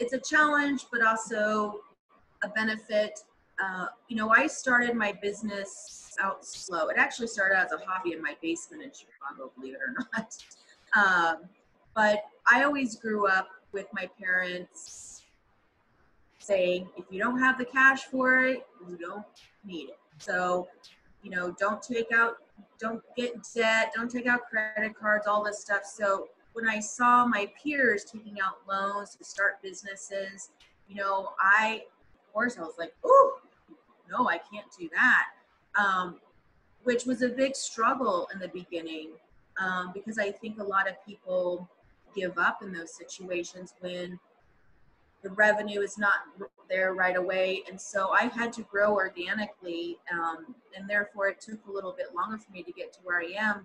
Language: English